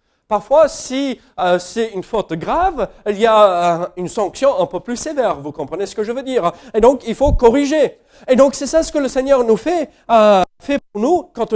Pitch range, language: 145-240 Hz, French